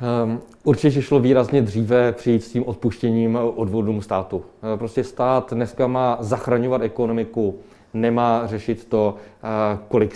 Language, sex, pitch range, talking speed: Czech, male, 115-140 Hz, 130 wpm